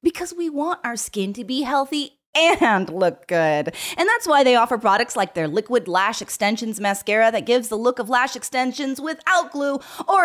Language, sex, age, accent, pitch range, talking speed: English, female, 30-49, American, 210-315 Hz, 195 wpm